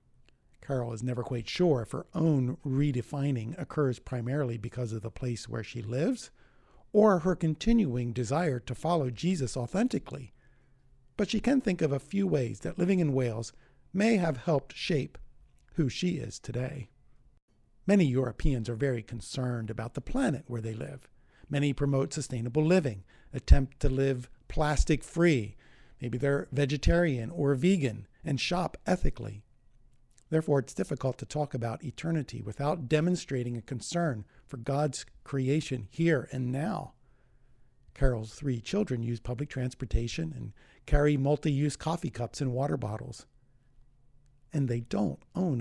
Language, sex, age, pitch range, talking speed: English, male, 50-69, 120-150 Hz, 140 wpm